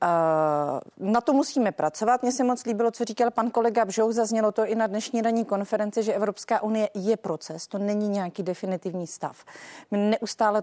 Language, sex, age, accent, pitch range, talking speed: Czech, female, 30-49, native, 195-250 Hz, 180 wpm